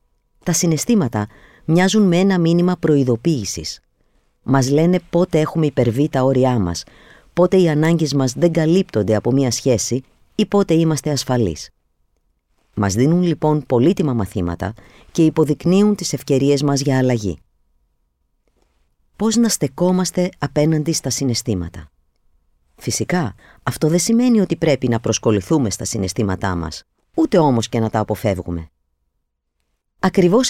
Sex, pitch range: female, 100-165 Hz